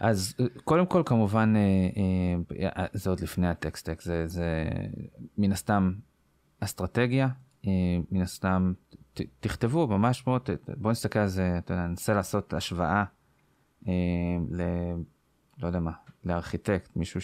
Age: 20-39